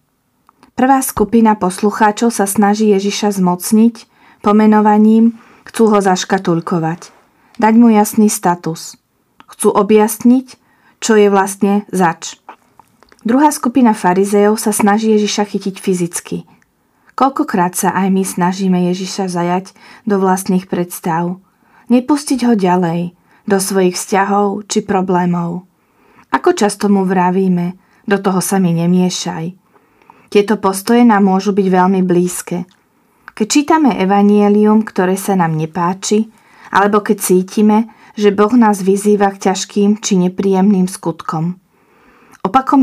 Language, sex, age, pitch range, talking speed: Slovak, female, 20-39, 185-215 Hz, 115 wpm